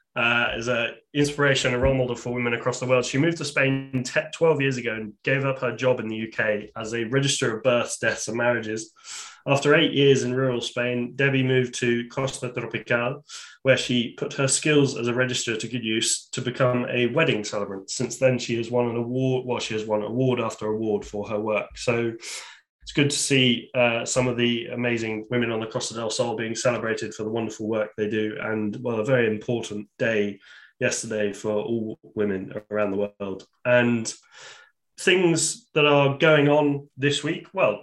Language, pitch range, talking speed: English, 115-135 Hz, 195 wpm